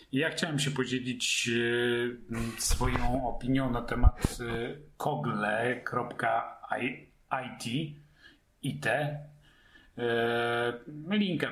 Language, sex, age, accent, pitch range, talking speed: Polish, male, 30-49, native, 115-135 Hz, 50 wpm